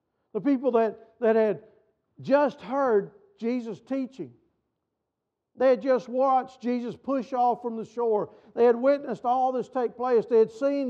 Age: 50-69